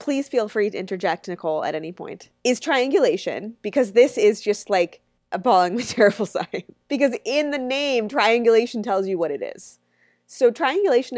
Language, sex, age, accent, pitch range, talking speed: English, female, 20-39, American, 175-245 Hz, 165 wpm